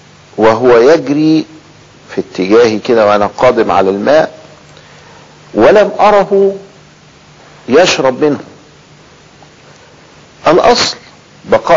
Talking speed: 75 wpm